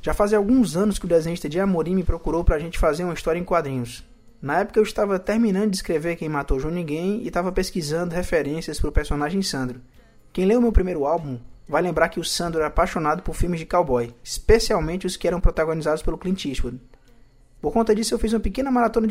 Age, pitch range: 20-39, 150-195 Hz